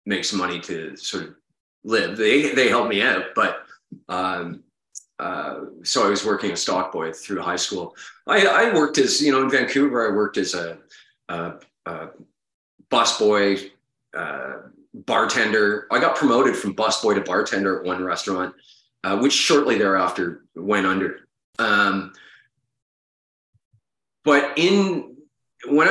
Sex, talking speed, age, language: male, 145 wpm, 30-49, English